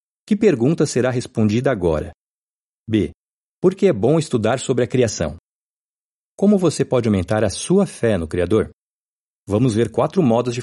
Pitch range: 100-140 Hz